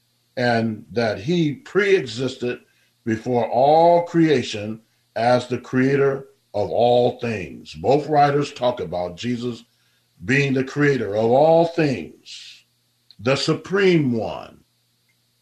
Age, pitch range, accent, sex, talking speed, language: 50-69, 115-130 Hz, American, male, 105 wpm, English